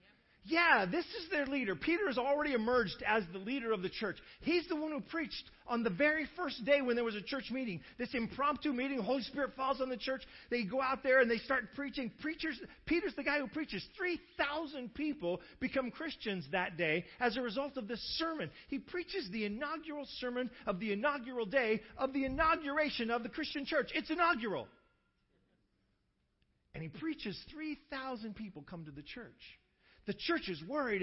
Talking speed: 190 wpm